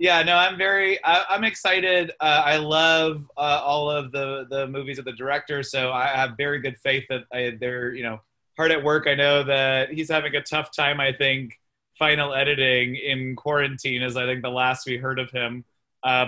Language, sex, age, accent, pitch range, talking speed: English, male, 30-49, American, 125-145 Hz, 205 wpm